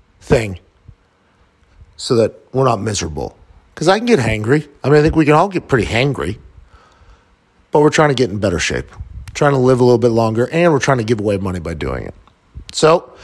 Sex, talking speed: male, 215 wpm